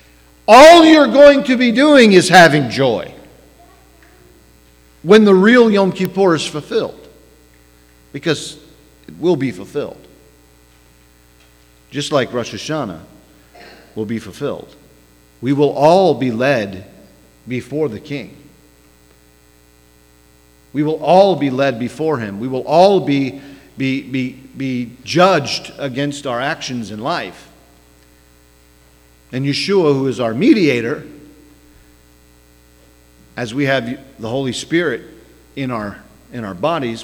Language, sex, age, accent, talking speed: English, male, 50-69, American, 115 wpm